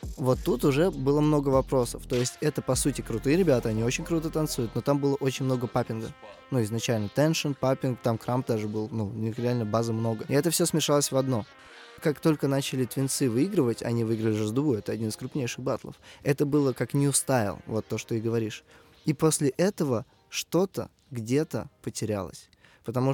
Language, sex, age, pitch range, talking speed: Russian, male, 20-39, 115-140 Hz, 190 wpm